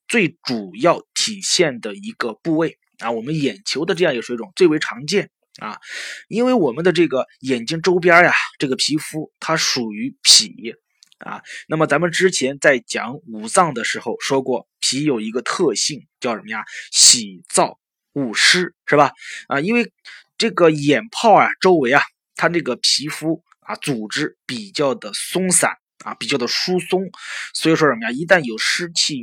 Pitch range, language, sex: 130-195 Hz, Chinese, male